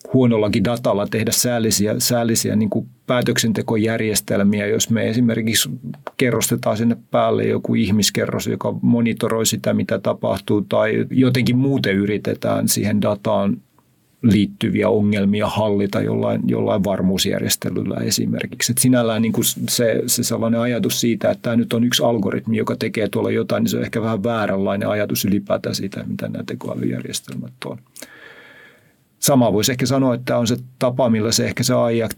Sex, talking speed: male, 140 wpm